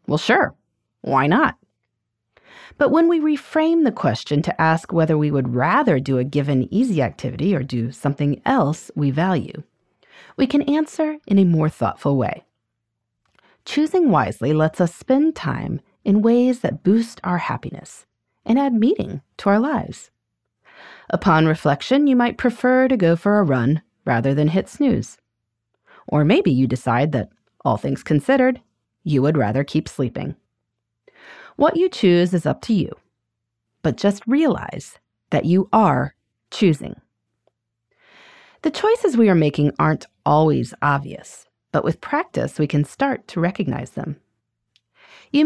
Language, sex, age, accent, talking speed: English, female, 30-49, American, 150 wpm